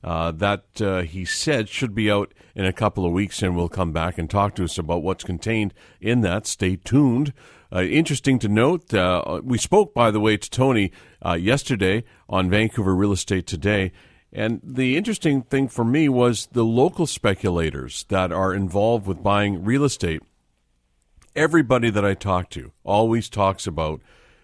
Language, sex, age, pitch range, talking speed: English, male, 50-69, 90-125 Hz, 175 wpm